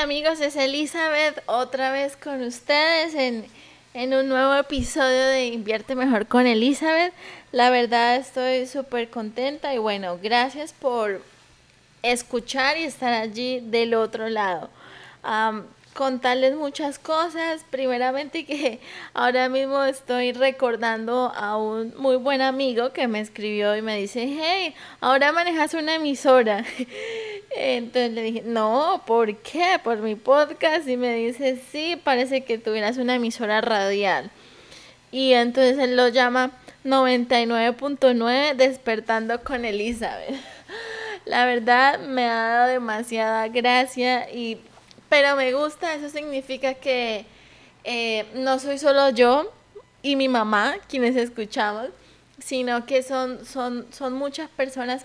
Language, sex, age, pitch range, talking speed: Spanish, female, 20-39, 235-280 Hz, 130 wpm